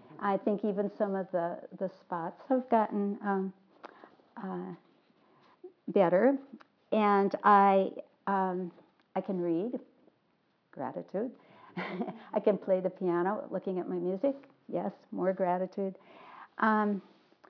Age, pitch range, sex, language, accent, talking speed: 60-79, 185-230 Hz, female, English, American, 115 wpm